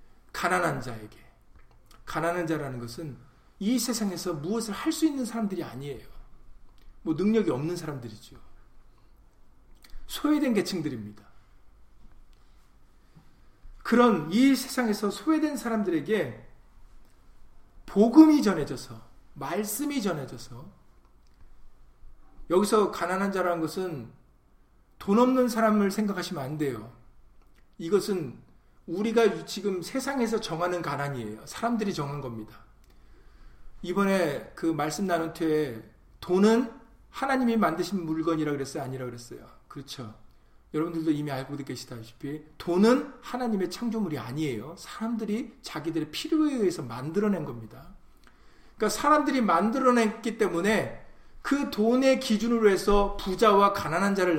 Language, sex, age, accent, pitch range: Korean, male, 40-59, native, 135-225 Hz